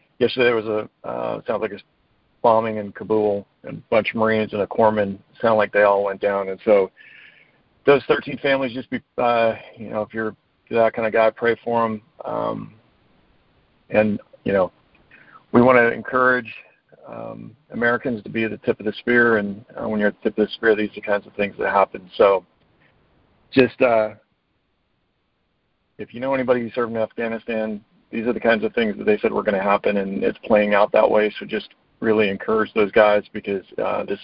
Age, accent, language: 50-69, American, English